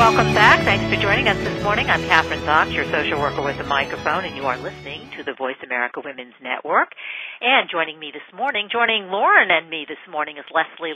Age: 50-69